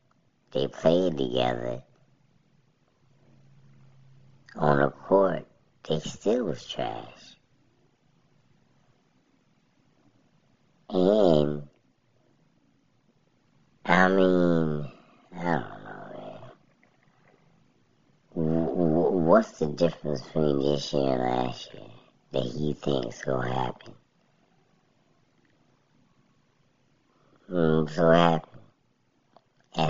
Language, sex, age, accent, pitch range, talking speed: English, male, 60-79, American, 65-80 Hz, 70 wpm